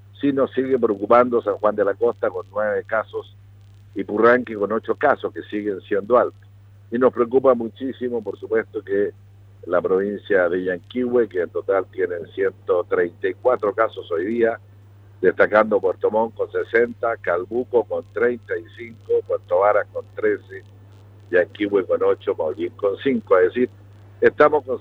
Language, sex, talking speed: Spanish, male, 150 wpm